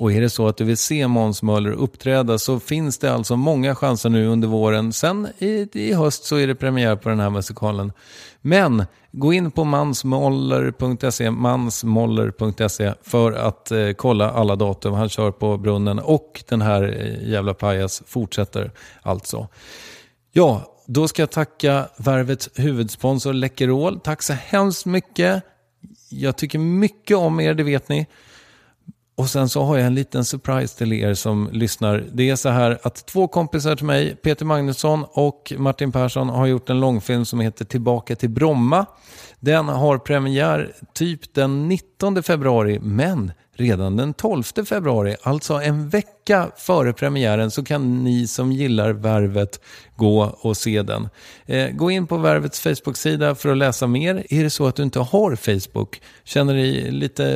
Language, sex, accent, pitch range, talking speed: English, male, Swedish, 110-145 Hz, 160 wpm